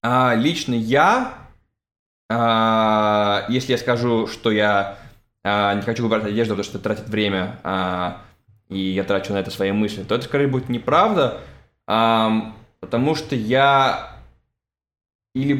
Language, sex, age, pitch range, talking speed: Russian, male, 20-39, 105-130 Hz, 140 wpm